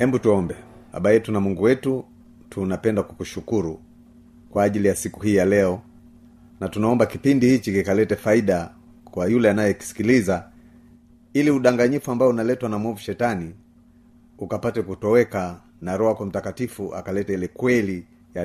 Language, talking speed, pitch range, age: Swahili, 125 wpm, 95-125 Hz, 40-59